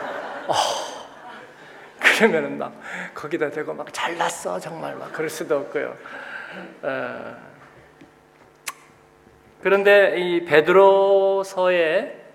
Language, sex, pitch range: Korean, male, 140-195 Hz